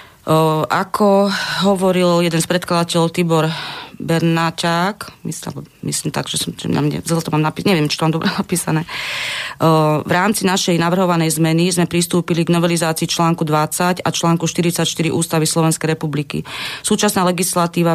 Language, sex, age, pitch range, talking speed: Slovak, female, 30-49, 160-175 Hz, 145 wpm